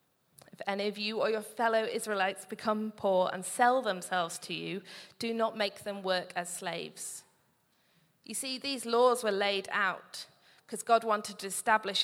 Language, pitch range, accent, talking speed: English, 185-225 Hz, British, 165 wpm